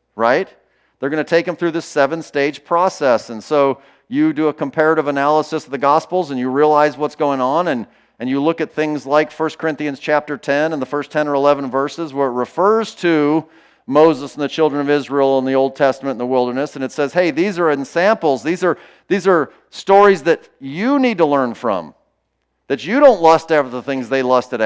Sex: male